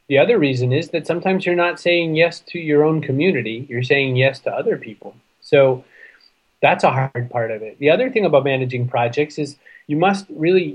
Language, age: French, 30-49